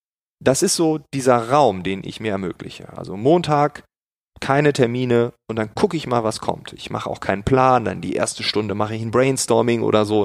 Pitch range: 105-140 Hz